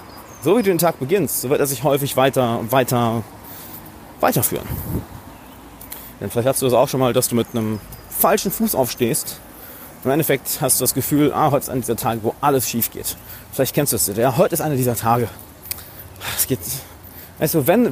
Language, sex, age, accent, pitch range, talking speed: German, male, 30-49, German, 115-160 Hz, 200 wpm